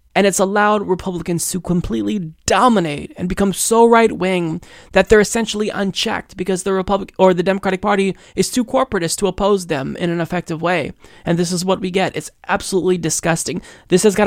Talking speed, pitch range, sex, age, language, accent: 190 wpm, 155-195 Hz, male, 20-39, English, American